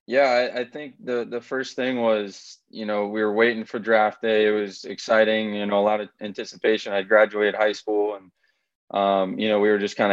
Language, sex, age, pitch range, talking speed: English, male, 20-39, 95-110 Hz, 230 wpm